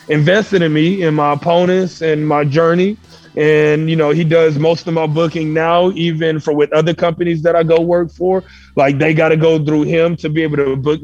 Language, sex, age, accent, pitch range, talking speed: English, male, 30-49, American, 150-165 Hz, 225 wpm